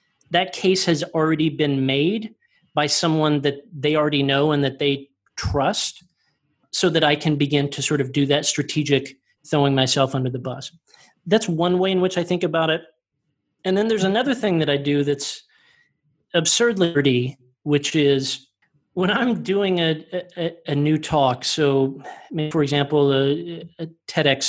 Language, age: English, 40-59